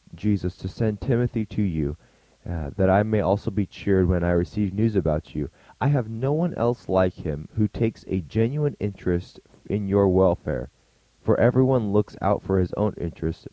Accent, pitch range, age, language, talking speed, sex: American, 95-120 Hz, 20-39, English, 185 wpm, male